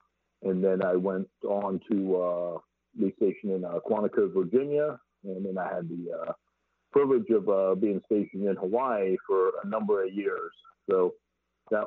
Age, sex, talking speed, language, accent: 50-69, male, 165 wpm, English, American